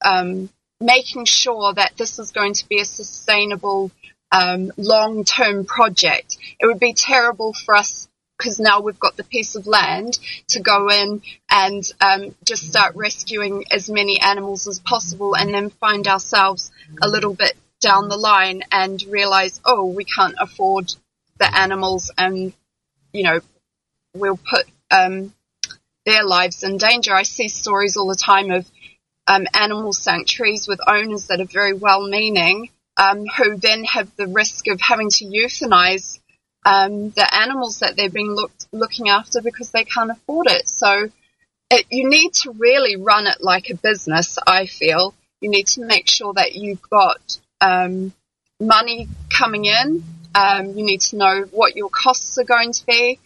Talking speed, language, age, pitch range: 160 wpm, English, 20-39, 195-230 Hz